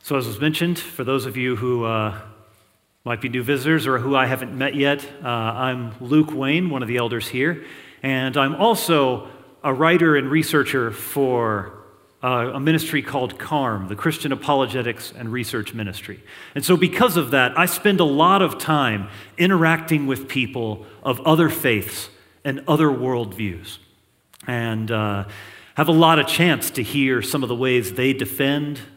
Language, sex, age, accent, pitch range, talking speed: Italian, male, 40-59, American, 115-150 Hz, 170 wpm